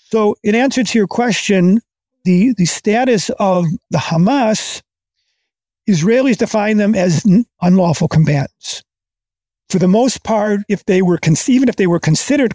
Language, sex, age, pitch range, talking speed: Hungarian, male, 50-69, 160-210 Hz, 150 wpm